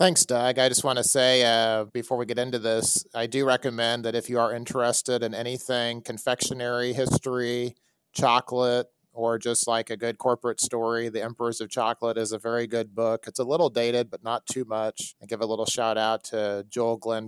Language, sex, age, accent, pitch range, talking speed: English, male, 30-49, American, 110-120 Hz, 205 wpm